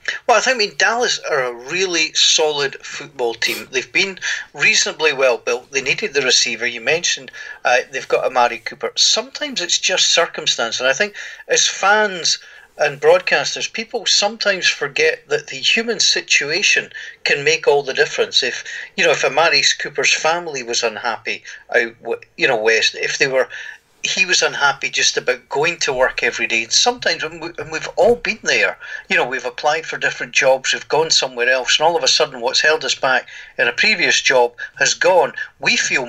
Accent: British